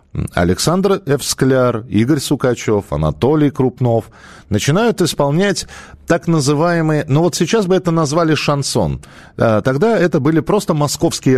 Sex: male